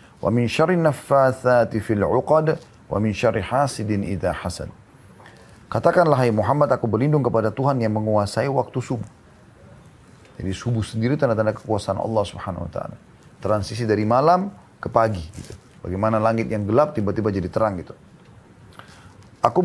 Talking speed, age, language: 135 wpm, 30-49, Indonesian